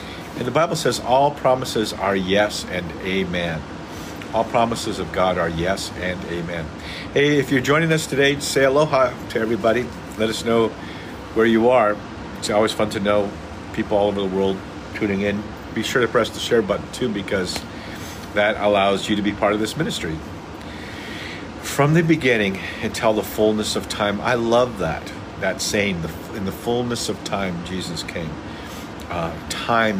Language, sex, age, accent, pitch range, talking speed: English, male, 50-69, American, 95-120 Hz, 170 wpm